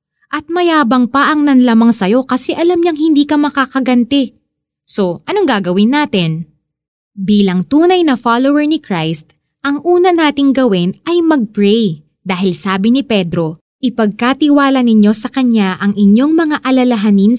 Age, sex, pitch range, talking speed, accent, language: 20-39, female, 185-270 Hz, 135 wpm, native, Filipino